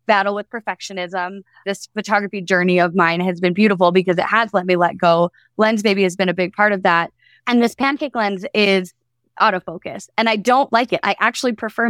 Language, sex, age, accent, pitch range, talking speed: English, female, 20-39, American, 185-220 Hz, 205 wpm